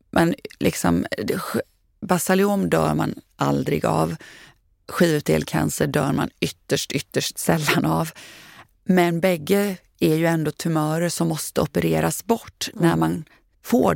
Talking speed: 115 wpm